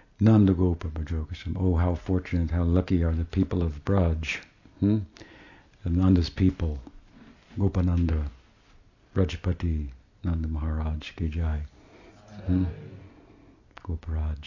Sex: male